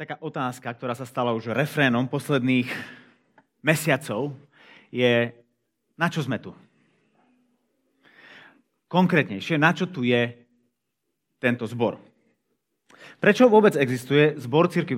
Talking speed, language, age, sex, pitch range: 105 wpm, Slovak, 30-49, male, 120-165 Hz